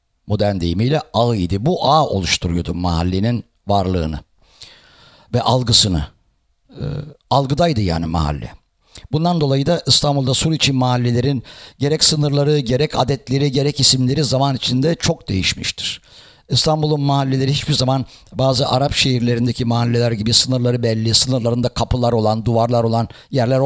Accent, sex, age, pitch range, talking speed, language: Turkish, male, 60-79, 110-135 Hz, 120 wpm, English